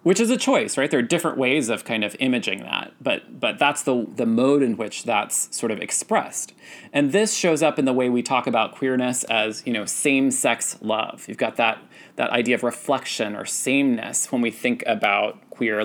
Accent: American